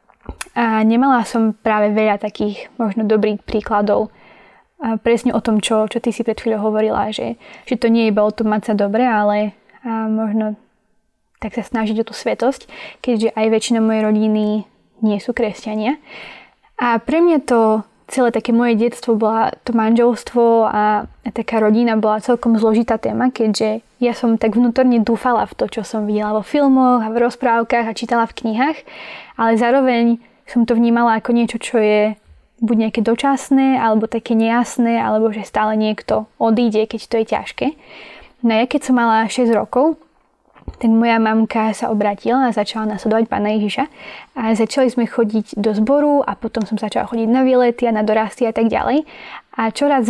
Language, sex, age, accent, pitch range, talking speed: English, female, 10-29, Czech, 215-240 Hz, 175 wpm